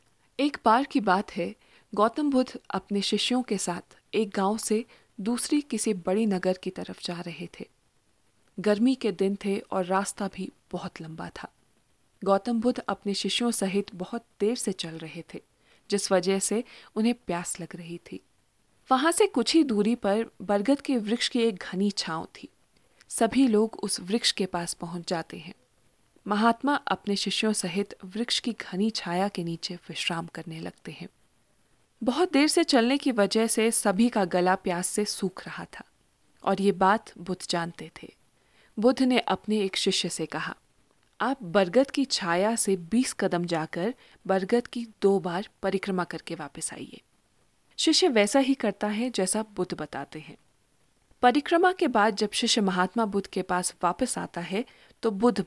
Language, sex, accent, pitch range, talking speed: Hindi, female, native, 180-235 Hz, 170 wpm